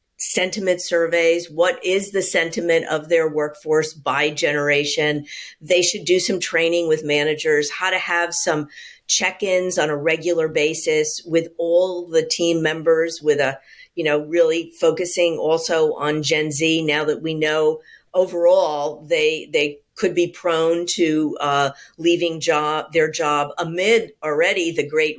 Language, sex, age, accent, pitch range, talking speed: English, female, 50-69, American, 155-190 Hz, 150 wpm